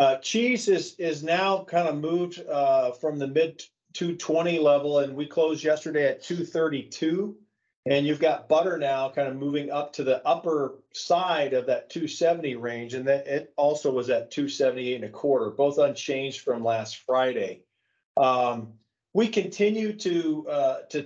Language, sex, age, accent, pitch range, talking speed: English, male, 40-59, American, 135-170 Hz, 160 wpm